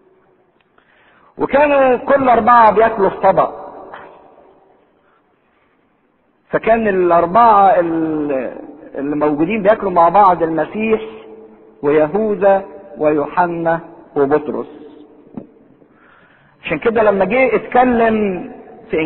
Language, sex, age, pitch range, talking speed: English, male, 50-69, 165-215 Hz, 70 wpm